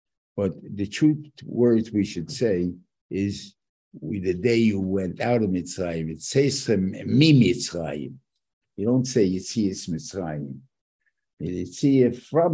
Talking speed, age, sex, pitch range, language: 140 wpm, 60-79, male, 90-125 Hz, English